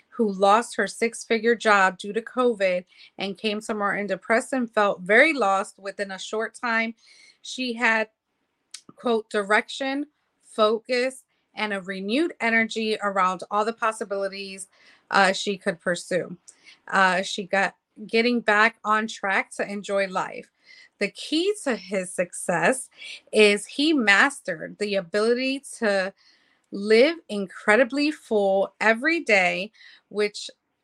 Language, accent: English, American